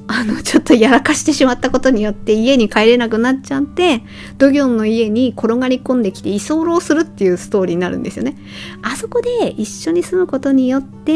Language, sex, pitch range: Japanese, female, 210-280 Hz